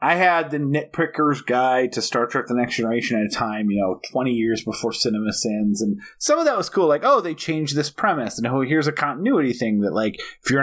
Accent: American